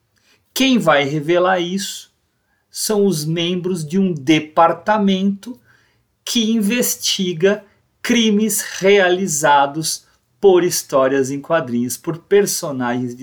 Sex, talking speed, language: male, 95 wpm, Portuguese